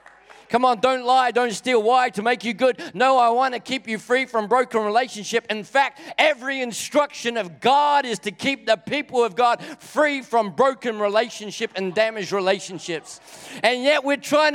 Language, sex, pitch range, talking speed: English, male, 165-240 Hz, 185 wpm